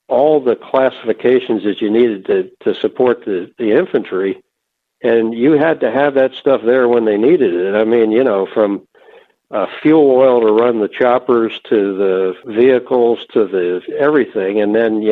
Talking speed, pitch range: 180 wpm, 110-145 Hz